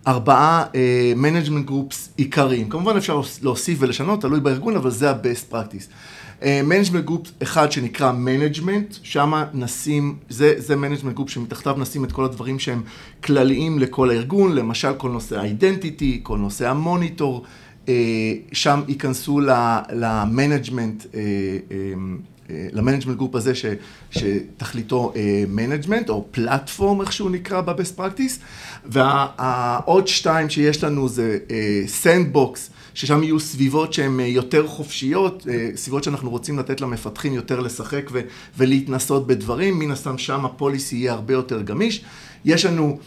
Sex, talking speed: male, 140 wpm